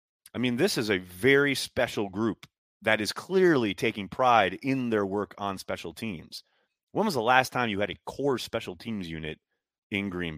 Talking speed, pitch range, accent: 190 wpm, 90-135 Hz, American